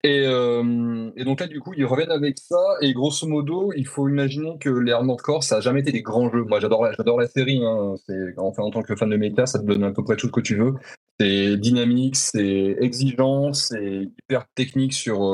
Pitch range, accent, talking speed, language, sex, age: 105-130 Hz, French, 245 wpm, French, male, 20-39